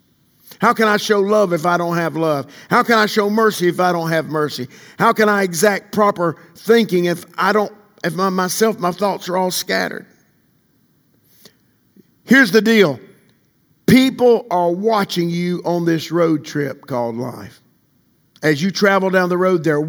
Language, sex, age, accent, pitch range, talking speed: English, male, 50-69, American, 155-205 Hz, 170 wpm